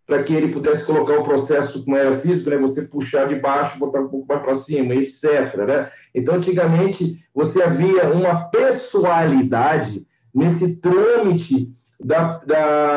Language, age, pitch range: Portuguese, 40-59, 135-195 Hz